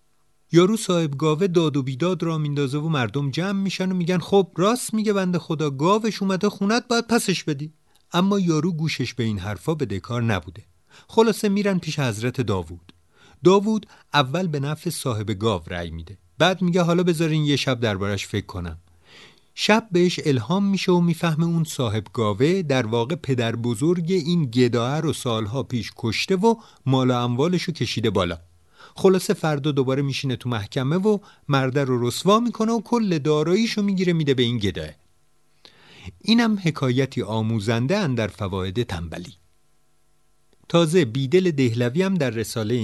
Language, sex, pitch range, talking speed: Persian, male, 115-180 Hz, 155 wpm